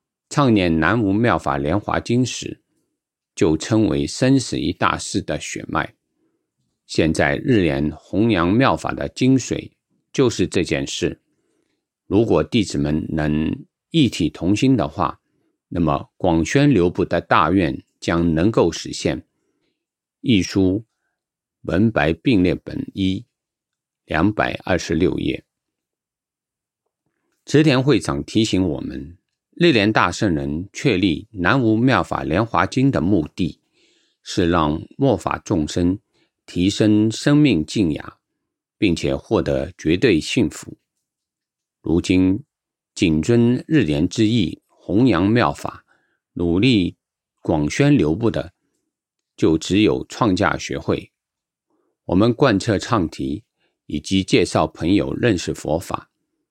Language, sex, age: English, male, 50-69